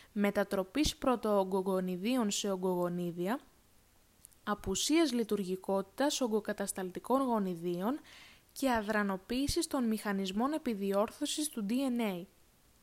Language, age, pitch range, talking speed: Greek, 20-39, 195-255 Hz, 70 wpm